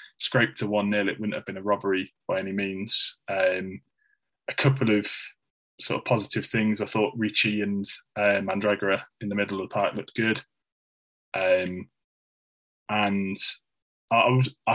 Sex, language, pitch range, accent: male, English, 95-115 Hz, British